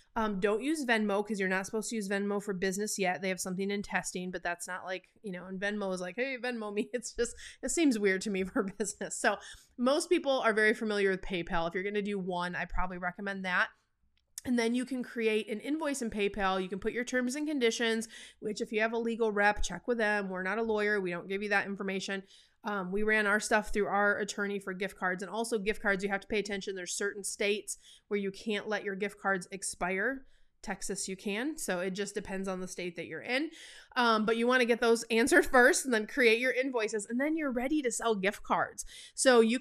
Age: 30-49